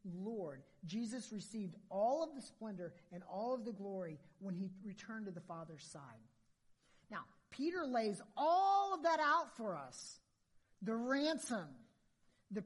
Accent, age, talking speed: American, 40-59, 145 wpm